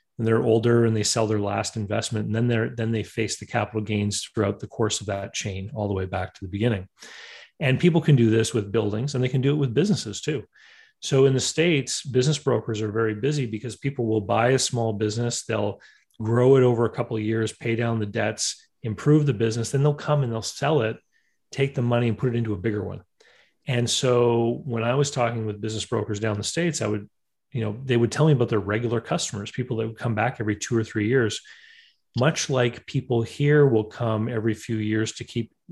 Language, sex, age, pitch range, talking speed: English, male, 30-49, 110-130 Hz, 235 wpm